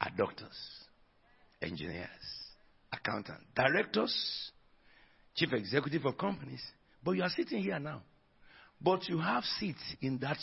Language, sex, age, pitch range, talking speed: English, male, 60-79, 145-185 Hz, 115 wpm